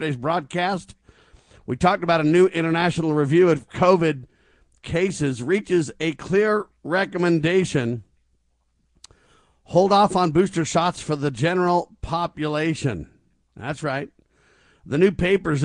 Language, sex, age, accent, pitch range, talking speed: English, male, 50-69, American, 145-175 Hz, 115 wpm